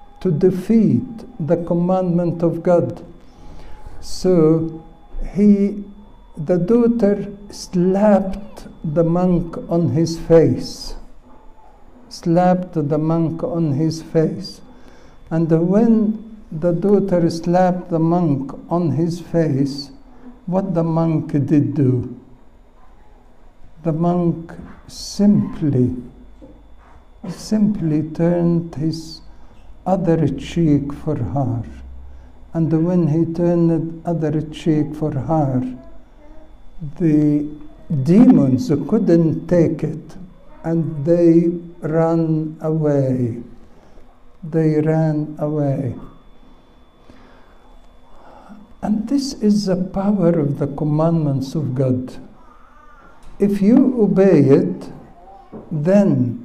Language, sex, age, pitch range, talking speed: English, male, 60-79, 150-185 Hz, 85 wpm